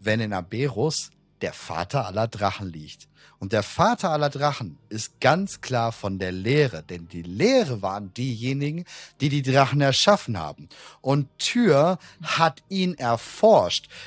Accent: German